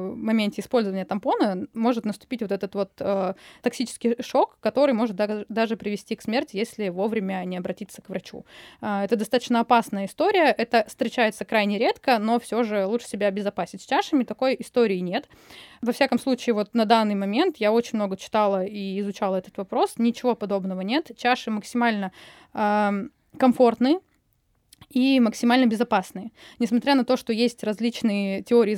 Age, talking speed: 20-39, 155 wpm